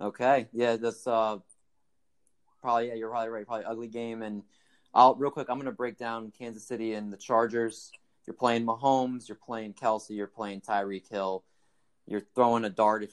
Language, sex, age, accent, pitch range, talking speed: English, male, 20-39, American, 100-125 Hz, 180 wpm